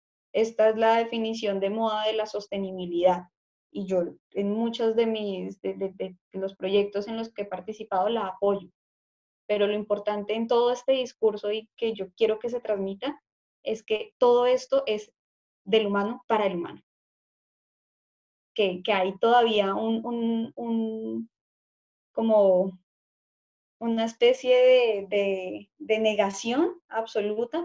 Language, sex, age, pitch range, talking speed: Spanish, female, 10-29, 200-230 Hz, 145 wpm